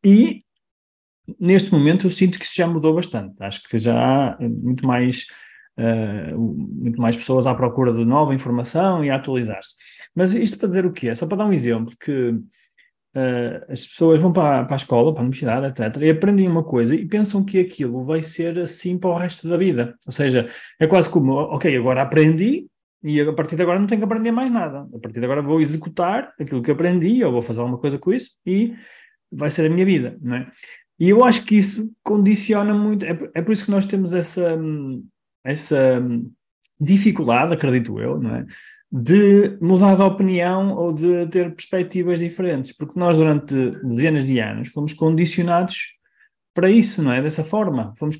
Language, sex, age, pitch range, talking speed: Portuguese, male, 20-39, 130-185 Hz, 195 wpm